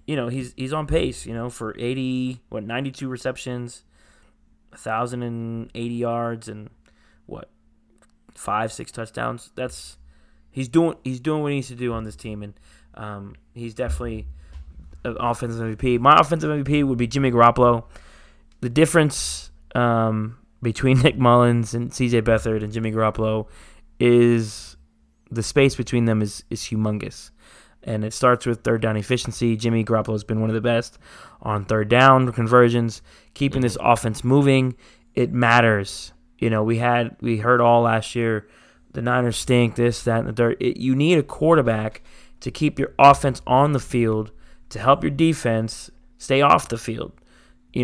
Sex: male